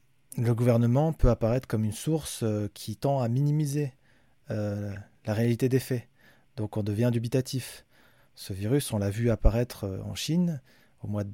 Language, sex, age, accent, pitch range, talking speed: French, male, 20-39, French, 105-135 Hz, 165 wpm